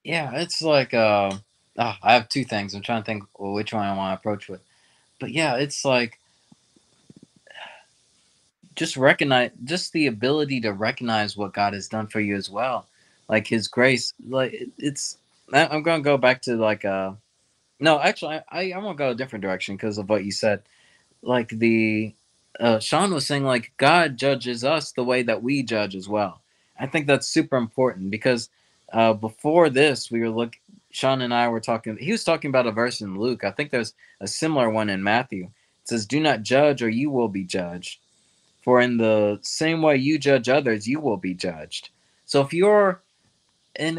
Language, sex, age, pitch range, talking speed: English, male, 20-39, 110-150 Hz, 195 wpm